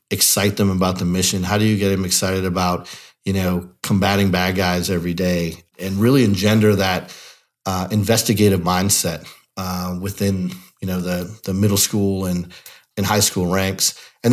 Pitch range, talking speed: 90-110 Hz, 170 wpm